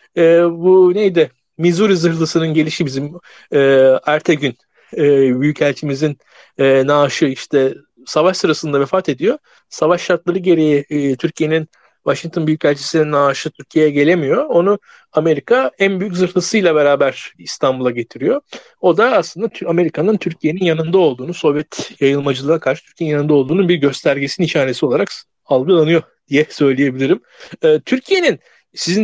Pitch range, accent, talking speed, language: 150-200 Hz, native, 120 wpm, Turkish